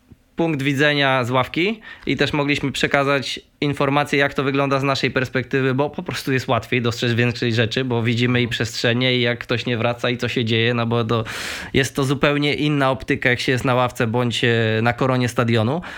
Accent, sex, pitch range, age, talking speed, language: native, male, 125-145 Hz, 20-39, 200 wpm, Polish